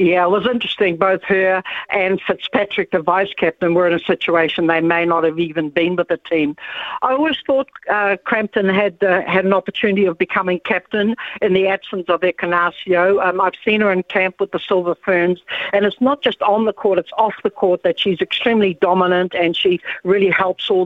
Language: English